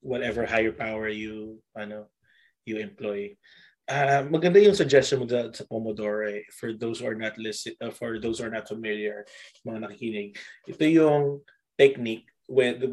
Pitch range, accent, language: 110-135 Hz, Filipino, English